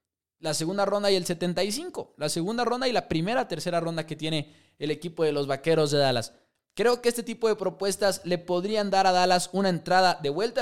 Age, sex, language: 20-39, male, English